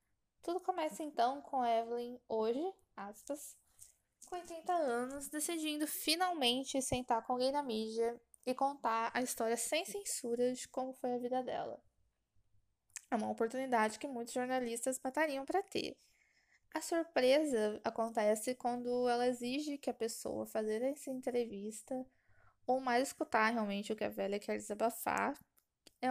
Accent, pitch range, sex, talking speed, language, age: Brazilian, 225-305 Hz, female, 140 wpm, Portuguese, 10-29